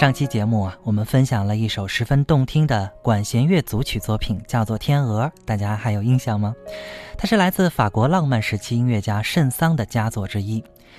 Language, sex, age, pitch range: Chinese, male, 20-39, 105-140 Hz